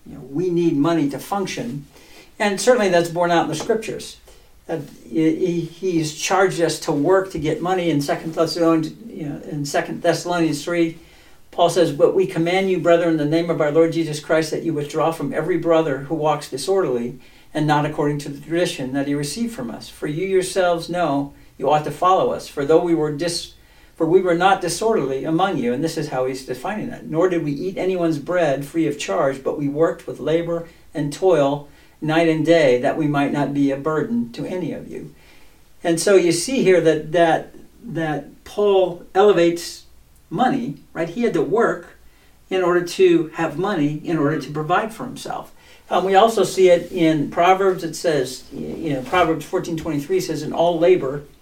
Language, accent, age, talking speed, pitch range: English, American, 60-79, 205 wpm, 150-175 Hz